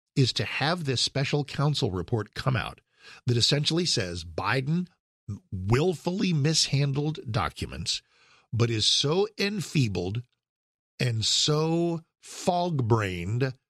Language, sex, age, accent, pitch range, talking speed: English, male, 50-69, American, 110-160 Hz, 100 wpm